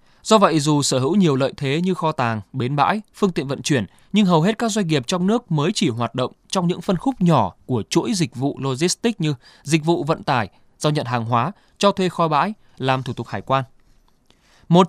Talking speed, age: 235 wpm, 20-39